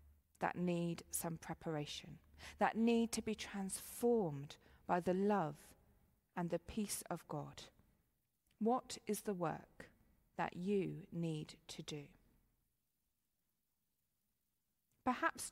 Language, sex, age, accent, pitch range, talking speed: English, female, 40-59, British, 170-225 Hz, 105 wpm